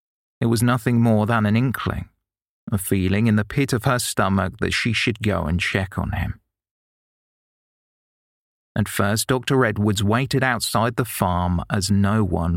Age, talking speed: 30-49, 160 wpm